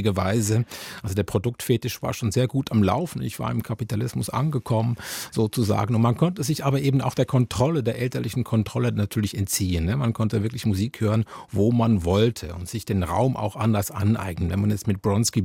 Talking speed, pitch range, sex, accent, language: 200 wpm, 100-120 Hz, male, German, German